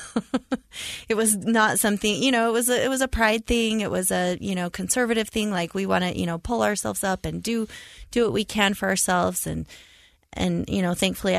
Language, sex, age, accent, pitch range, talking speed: English, female, 20-39, American, 170-220 Hz, 220 wpm